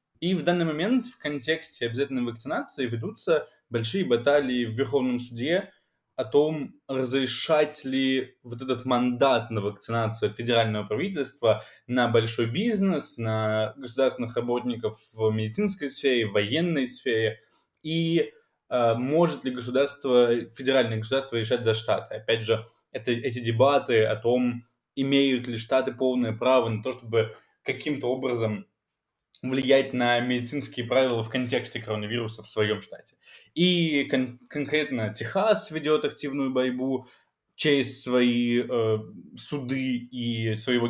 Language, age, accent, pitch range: Russian, 20-39, native, 115-135 Hz